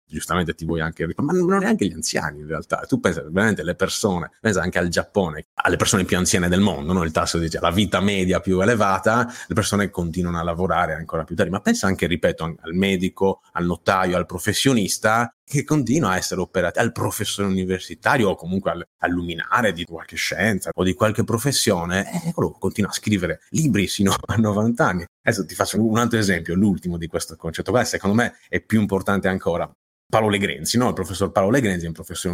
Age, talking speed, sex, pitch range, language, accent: 30-49, 200 wpm, male, 85-110 Hz, Italian, native